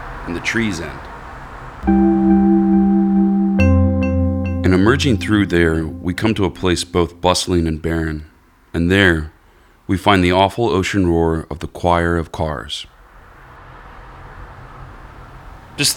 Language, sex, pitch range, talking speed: English, male, 80-105 Hz, 115 wpm